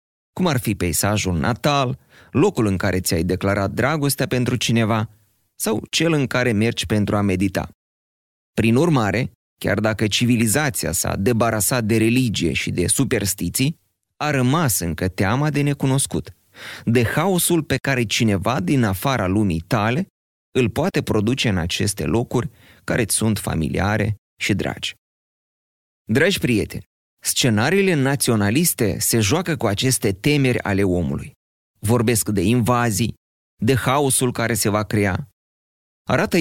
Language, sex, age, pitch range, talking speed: Romanian, male, 30-49, 100-135 Hz, 130 wpm